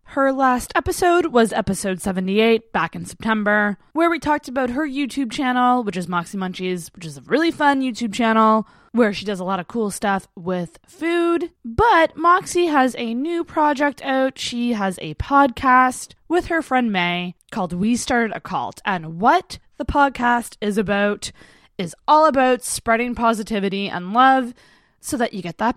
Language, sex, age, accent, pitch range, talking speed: English, female, 20-39, American, 205-280 Hz, 175 wpm